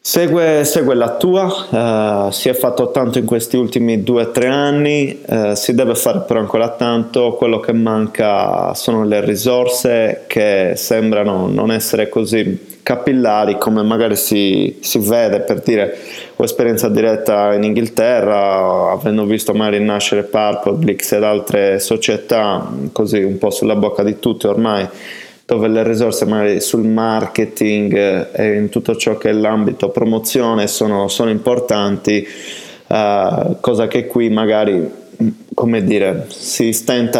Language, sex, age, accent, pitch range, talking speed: Italian, male, 20-39, native, 105-120 Hz, 140 wpm